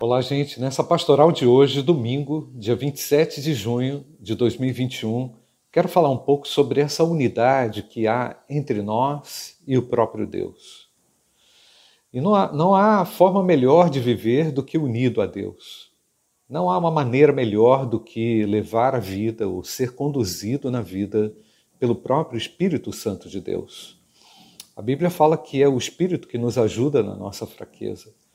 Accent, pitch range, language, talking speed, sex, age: Brazilian, 120-145 Hz, Portuguese, 160 wpm, male, 50-69